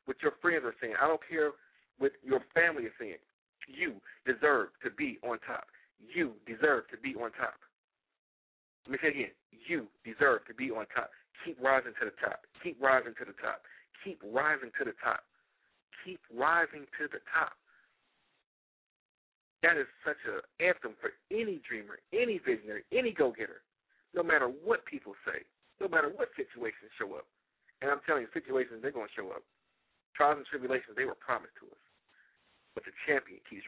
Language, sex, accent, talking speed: English, male, American, 180 wpm